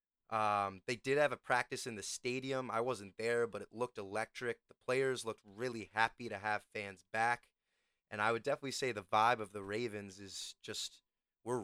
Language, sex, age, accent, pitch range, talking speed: English, male, 20-39, American, 105-125 Hz, 195 wpm